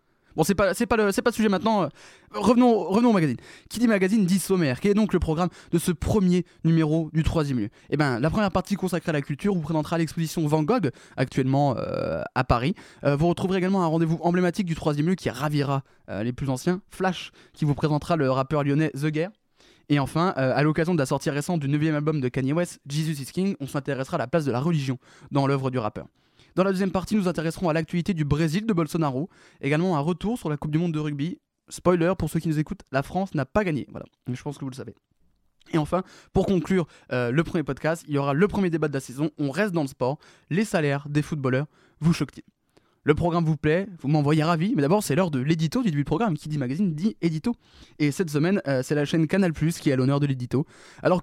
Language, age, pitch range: French, 20-39, 145-180 Hz